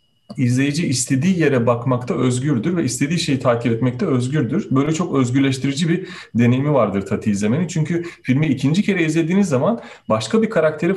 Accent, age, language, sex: native, 40-59, Turkish, male